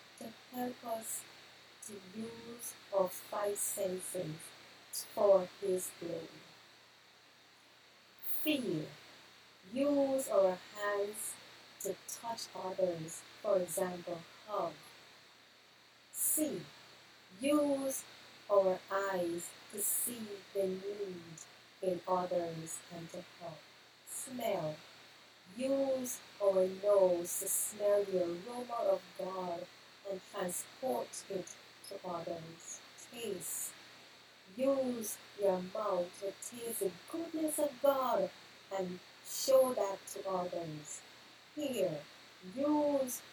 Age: 30-49